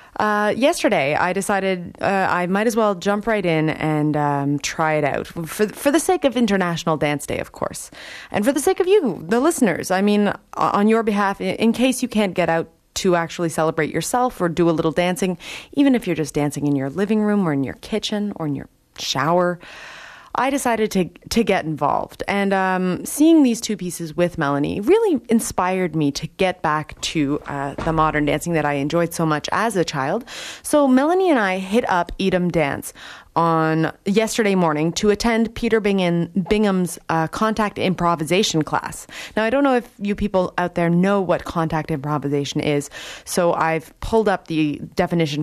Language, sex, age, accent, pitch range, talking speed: English, female, 20-39, American, 165-220 Hz, 190 wpm